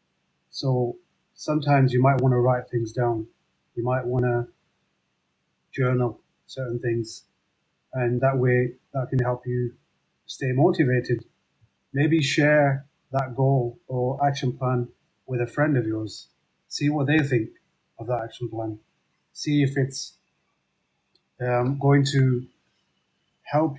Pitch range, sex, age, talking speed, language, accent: 125-140 Hz, male, 30-49, 130 wpm, English, British